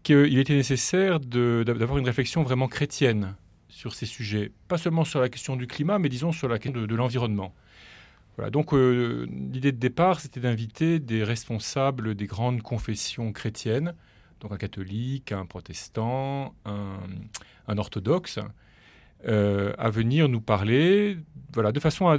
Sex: male